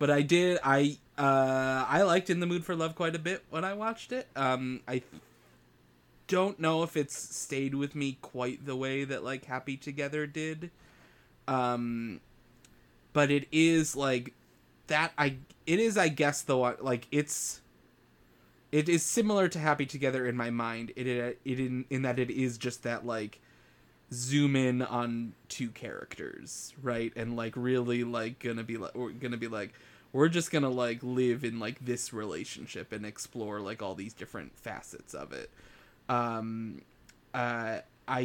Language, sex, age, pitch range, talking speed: English, male, 20-39, 115-135 Hz, 175 wpm